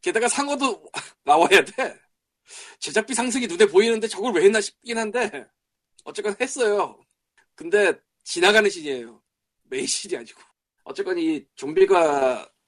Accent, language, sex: native, Korean, male